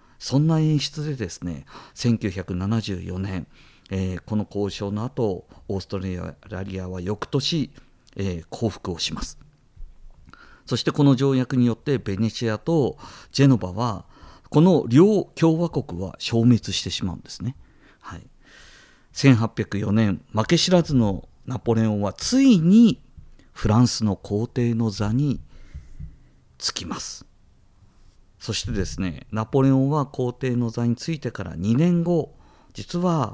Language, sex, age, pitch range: Japanese, male, 50-69, 100-150 Hz